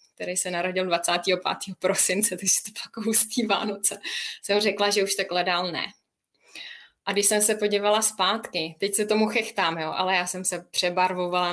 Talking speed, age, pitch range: 180 wpm, 20-39, 185-215 Hz